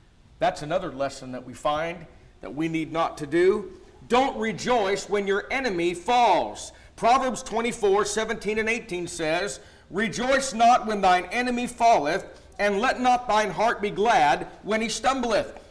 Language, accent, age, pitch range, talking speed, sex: English, American, 50-69, 160-225 Hz, 155 wpm, male